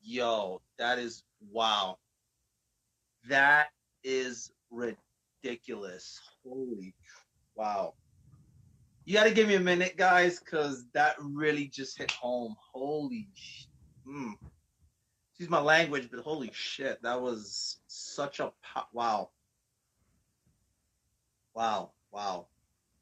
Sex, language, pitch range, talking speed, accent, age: male, English, 125-155 Hz, 100 wpm, American, 30-49